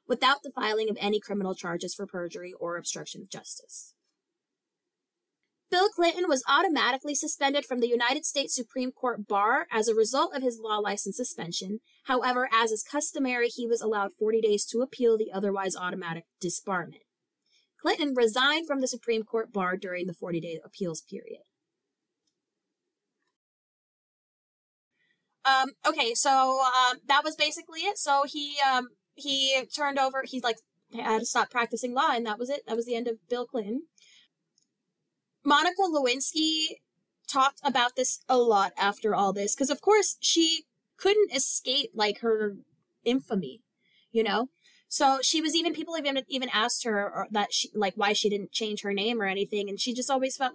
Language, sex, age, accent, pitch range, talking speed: English, female, 20-39, American, 205-275 Hz, 165 wpm